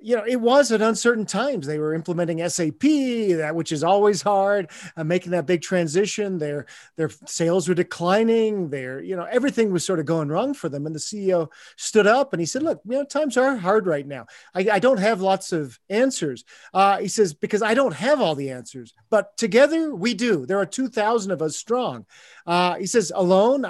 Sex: male